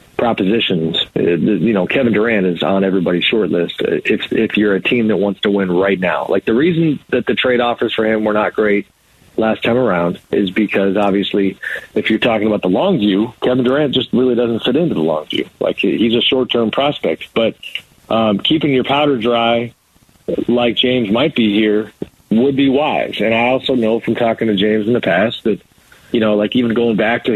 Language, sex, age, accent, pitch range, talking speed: English, male, 40-59, American, 100-120 Hz, 210 wpm